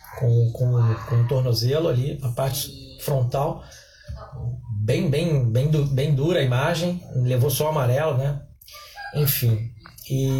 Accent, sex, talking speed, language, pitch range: Brazilian, male, 125 wpm, Portuguese, 135-170 Hz